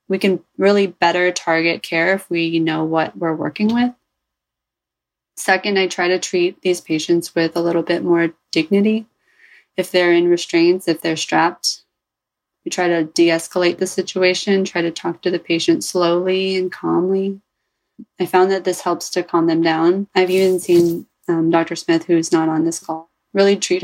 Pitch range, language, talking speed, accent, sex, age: 170-195 Hz, English, 175 wpm, American, female, 20-39